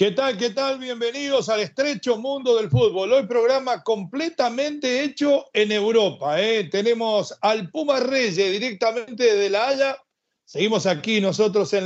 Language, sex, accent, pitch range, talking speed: Spanish, male, Argentinian, 195-240 Hz, 145 wpm